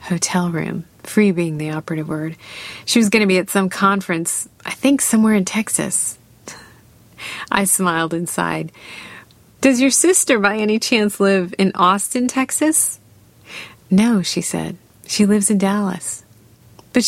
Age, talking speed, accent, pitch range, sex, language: 30-49, 150 wpm, American, 170-205 Hz, female, English